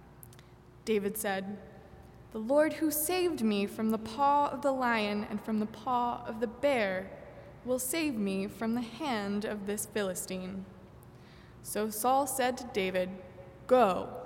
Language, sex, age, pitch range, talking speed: English, female, 20-39, 205-250 Hz, 145 wpm